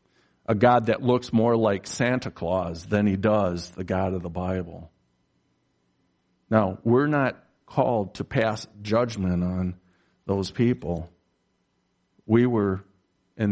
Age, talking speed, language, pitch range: 50-69, 130 wpm, English, 95-110 Hz